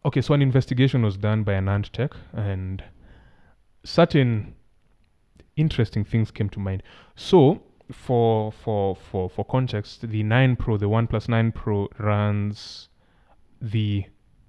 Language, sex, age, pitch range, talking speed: English, male, 20-39, 100-125 Hz, 130 wpm